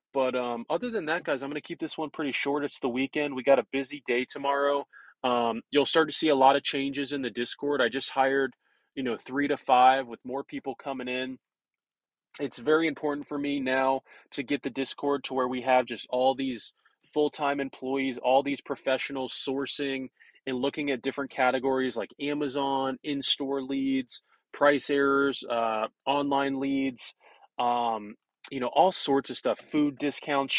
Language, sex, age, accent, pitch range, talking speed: English, male, 20-39, American, 130-145 Hz, 180 wpm